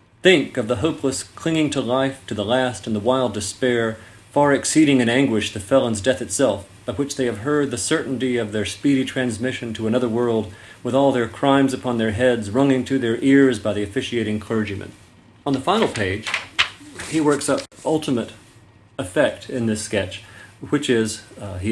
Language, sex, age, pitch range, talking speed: English, male, 40-59, 105-130 Hz, 185 wpm